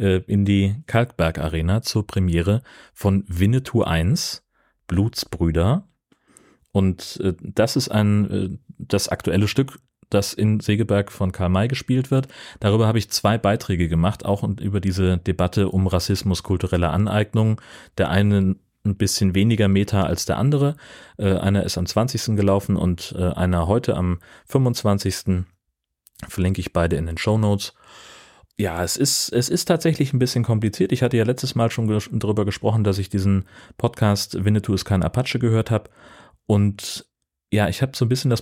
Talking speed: 155 wpm